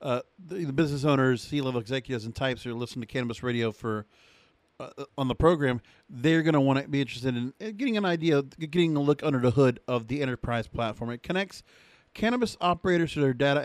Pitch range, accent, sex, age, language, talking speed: 125-165 Hz, American, male, 40-59, English, 210 wpm